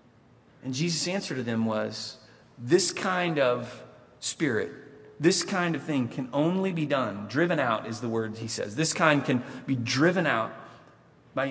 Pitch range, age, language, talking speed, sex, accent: 135-165 Hz, 30-49, English, 165 wpm, male, American